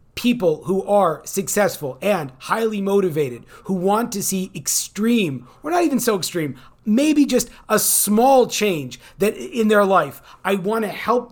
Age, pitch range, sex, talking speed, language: 30-49, 185-235 Hz, male, 150 wpm, English